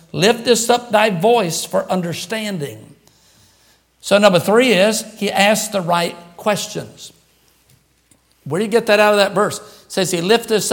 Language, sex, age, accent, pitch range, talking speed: English, male, 60-79, American, 180-220 Hz, 160 wpm